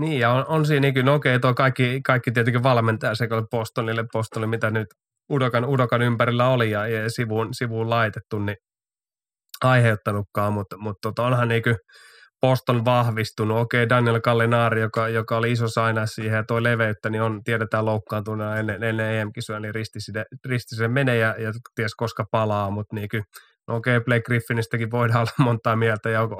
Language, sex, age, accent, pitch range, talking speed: Finnish, male, 20-39, native, 110-120 Hz, 160 wpm